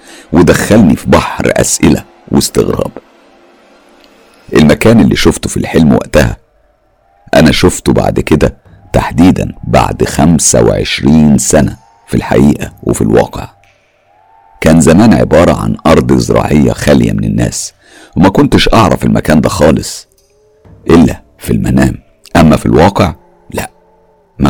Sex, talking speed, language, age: male, 115 wpm, Arabic, 50-69